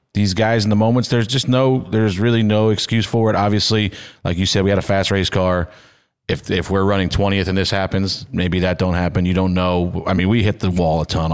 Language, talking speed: English, 250 wpm